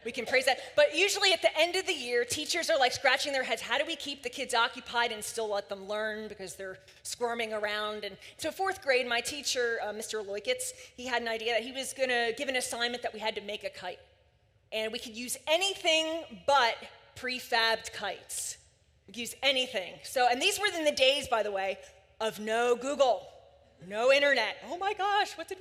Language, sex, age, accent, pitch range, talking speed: English, female, 20-39, American, 215-290 Hz, 220 wpm